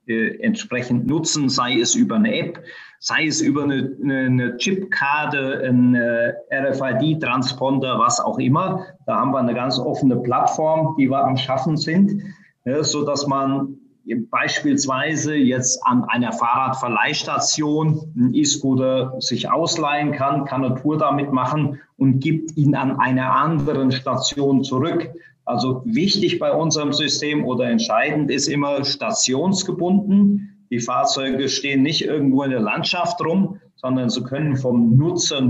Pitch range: 130-165 Hz